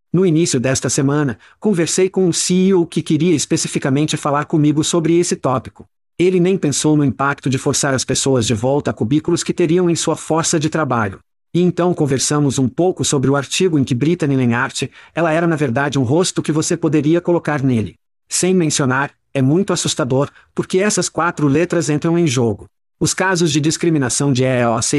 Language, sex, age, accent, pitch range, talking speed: Portuguese, male, 50-69, Brazilian, 140-170 Hz, 185 wpm